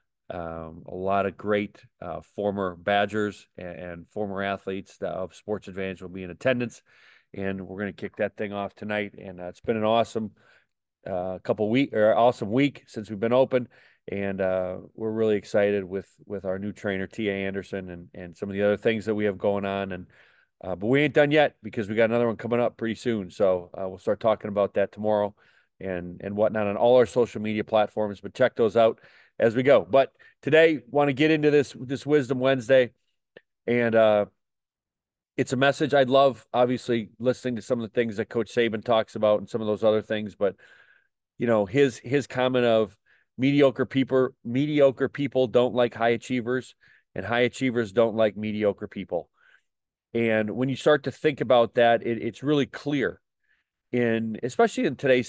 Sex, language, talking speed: male, English, 195 wpm